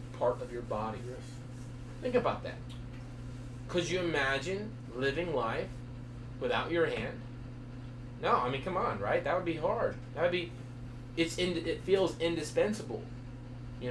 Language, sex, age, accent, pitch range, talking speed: English, male, 30-49, American, 120-170 Hz, 140 wpm